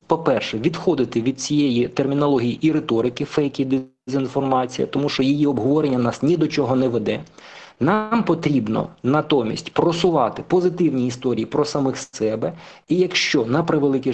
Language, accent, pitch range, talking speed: Ukrainian, native, 120-145 Hz, 135 wpm